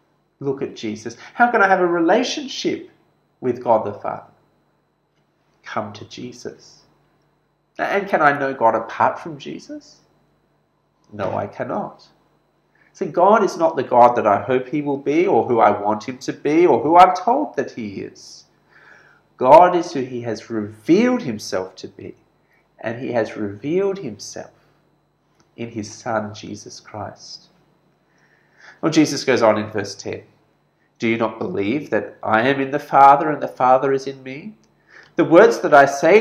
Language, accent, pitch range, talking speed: English, Australian, 115-175 Hz, 165 wpm